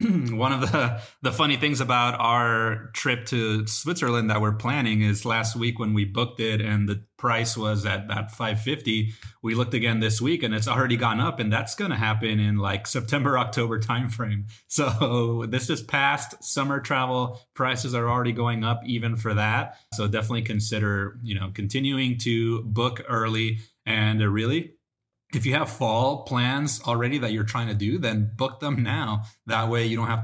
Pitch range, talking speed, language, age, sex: 110-130 Hz, 185 wpm, English, 30-49, male